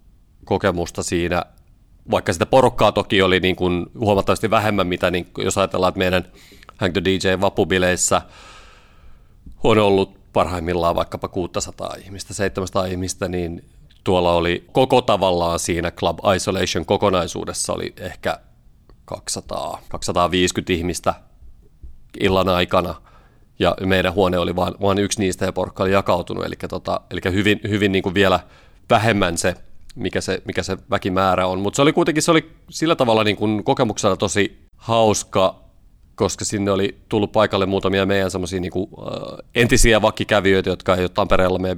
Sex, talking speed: male, 145 wpm